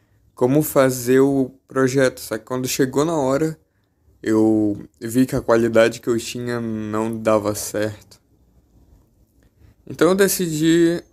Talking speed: 130 wpm